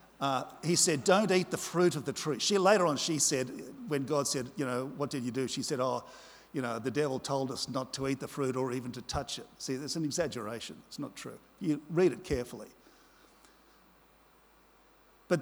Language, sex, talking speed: English, male, 215 wpm